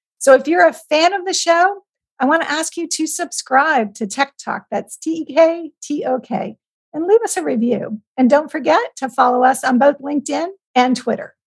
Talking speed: 190 wpm